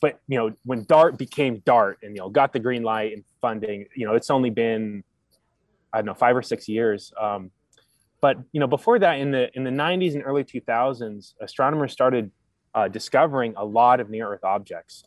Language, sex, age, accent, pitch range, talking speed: English, male, 20-39, American, 110-135 Hz, 205 wpm